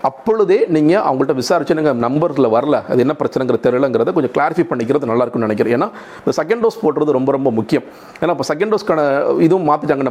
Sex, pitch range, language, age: male, 130-170 Hz, Tamil, 40-59